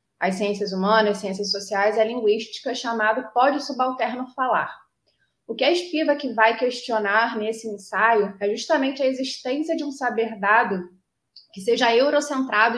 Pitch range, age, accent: 210-255 Hz, 20-39, Brazilian